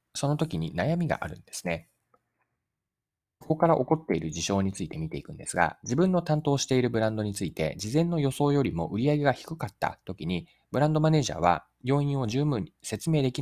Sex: male